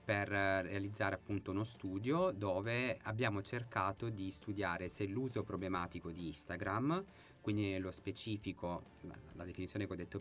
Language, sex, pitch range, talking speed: Italian, male, 90-105 Hz, 135 wpm